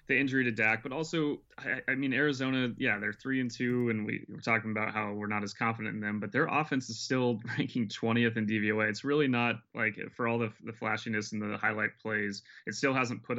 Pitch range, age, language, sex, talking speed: 105-120 Hz, 20-39, English, male, 240 wpm